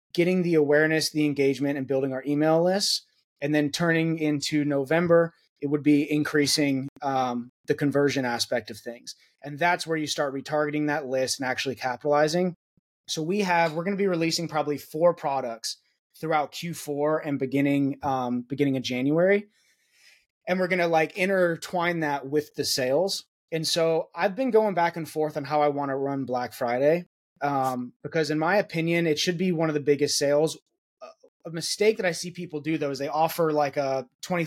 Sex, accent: male, American